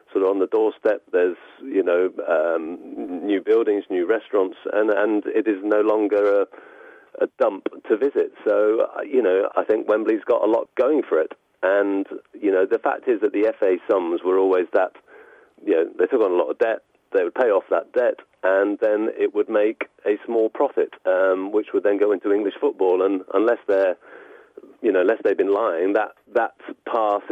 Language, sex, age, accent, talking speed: English, male, 40-59, British, 205 wpm